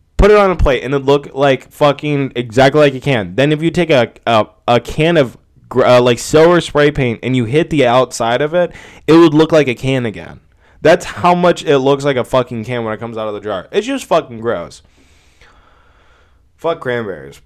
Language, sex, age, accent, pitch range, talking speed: English, male, 20-39, American, 115-140 Hz, 225 wpm